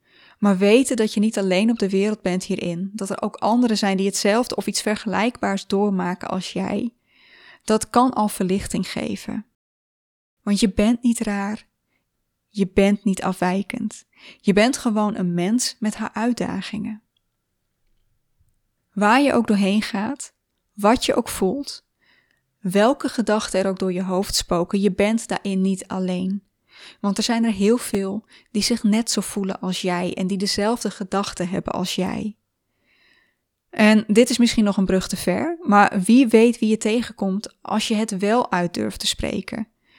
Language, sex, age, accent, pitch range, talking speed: Dutch, female, 20-39, Dutch, 195-225 Hz, 165 wpm